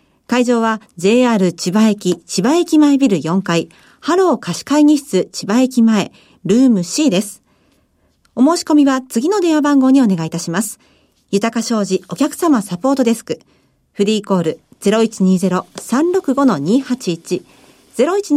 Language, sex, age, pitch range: Japanese, female, 40-59, 200-285 Hz